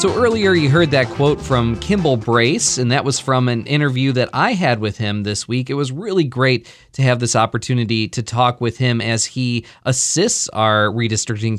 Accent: American